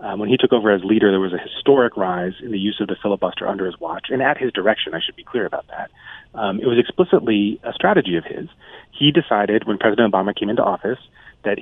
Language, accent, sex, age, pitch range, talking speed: English, American, male, 30-49, 100-125 Hz, 250 wpm